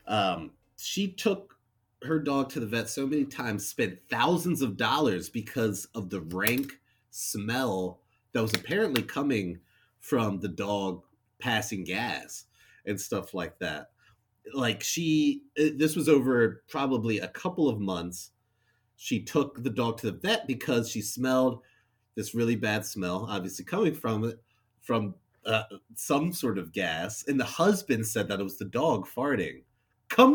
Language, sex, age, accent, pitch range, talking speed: English, male, 30-49, American, 105-140 Hz, 155 wpm